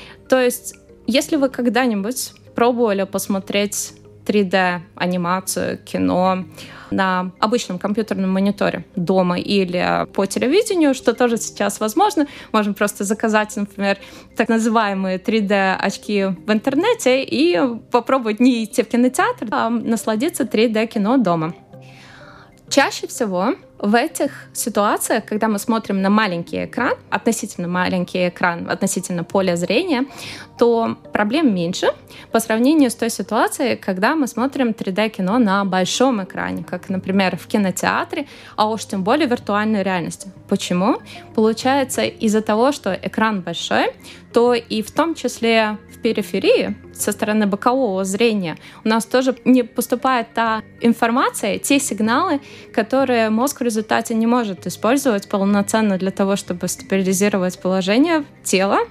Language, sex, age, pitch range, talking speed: Russian, female, 20-39, 195-245 Hz, 125 wpm